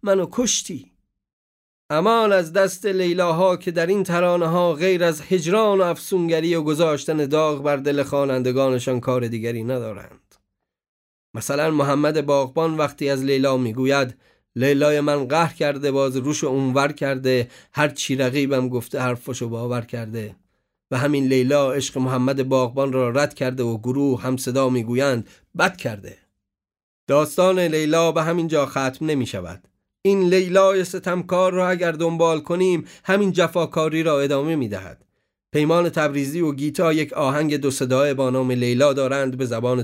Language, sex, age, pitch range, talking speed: Persian, male, 30-49, 125-160 Hz, 150 wpm